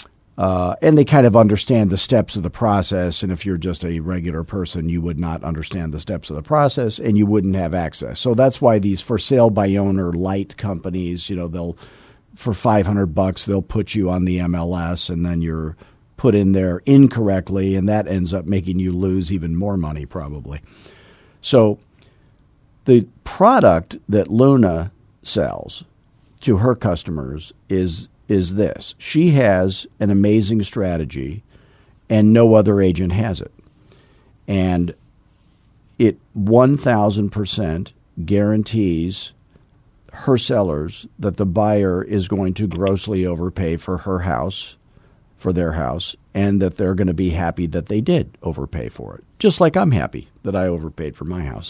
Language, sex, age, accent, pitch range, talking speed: English, male, 50-69, American, 90-110 Hz, 160 wpm